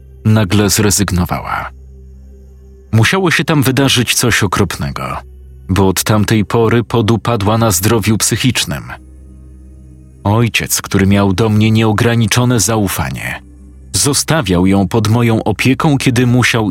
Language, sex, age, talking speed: Polish, male, 40-59, 110 wpm